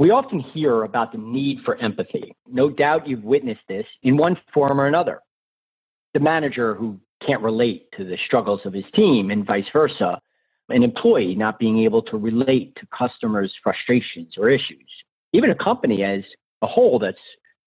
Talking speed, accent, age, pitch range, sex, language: 175 wpm, American, 40-59, 115-180 Hz, male, English